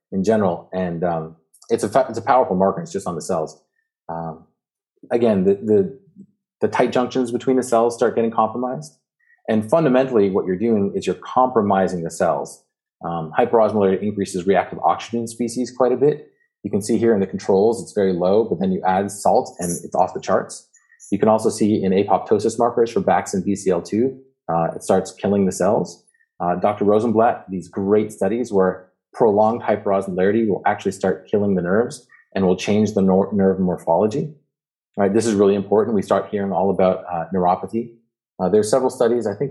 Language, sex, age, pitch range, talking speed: English, male, 30-49, 95-125 Hz, 190 wpm